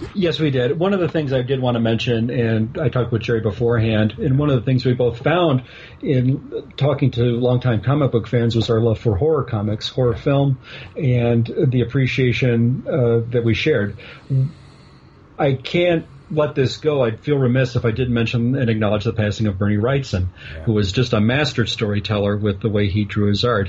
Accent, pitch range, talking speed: American, 110-130 Hz, 205 wpm